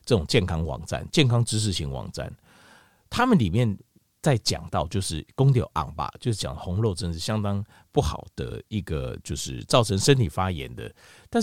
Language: Chinese